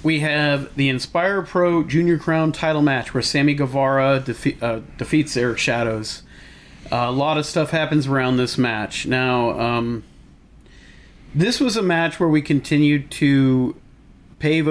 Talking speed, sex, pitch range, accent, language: 150 wpm, male, 135-155 Hz, American, English